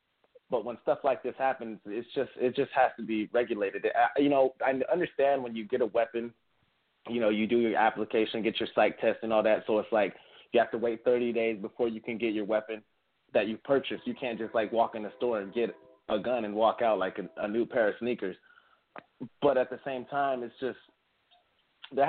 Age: 20-39